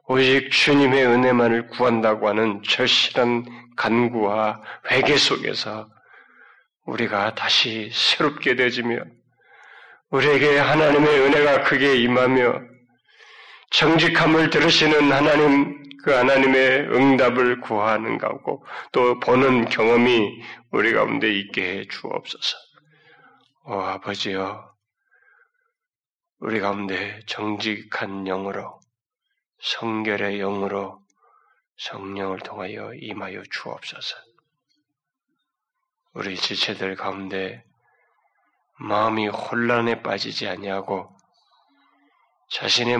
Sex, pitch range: male, 105-140 Hz